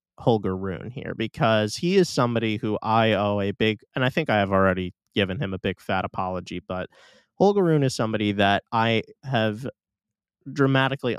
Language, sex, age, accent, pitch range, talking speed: English, male, 20-39, American, 105-135 Hz, 175 wpm